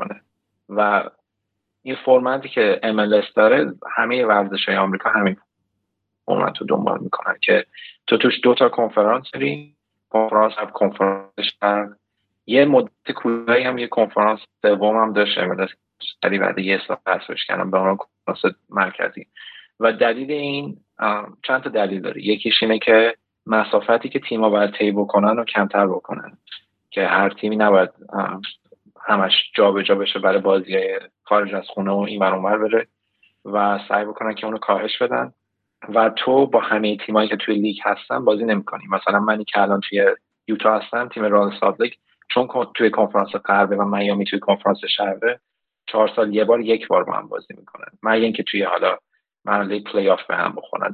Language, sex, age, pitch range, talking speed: Persian, male, 30-49, 100-115 Hz, 155 wpm